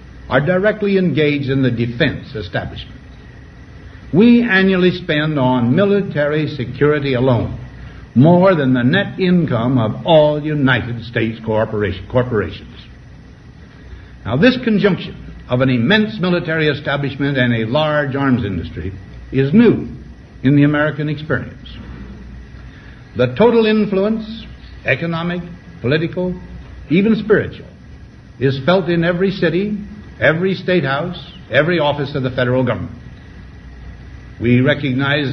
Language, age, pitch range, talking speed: English, 60-79, 120-165 Hz, 115 wpm